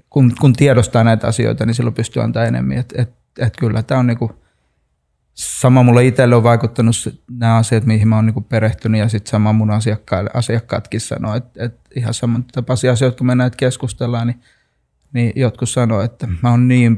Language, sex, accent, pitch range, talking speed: Finnish, male, native, 110-125 Hz, 185 wpm